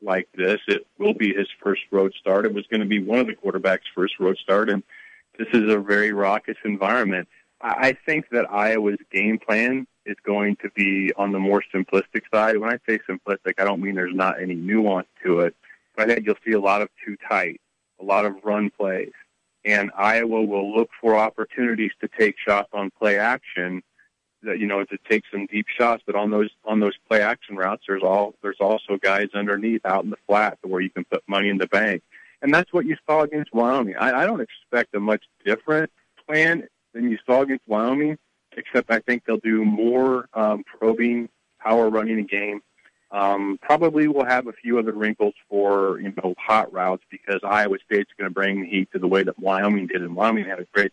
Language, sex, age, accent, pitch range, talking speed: English, male, 40-59, American, 100-115 Hz, 215 wpm